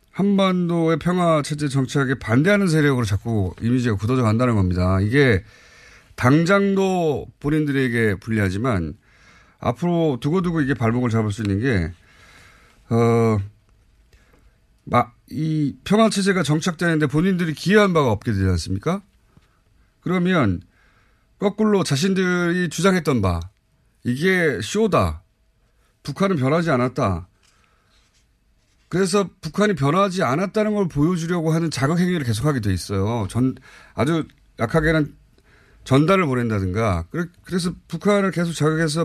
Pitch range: 110-170 Hz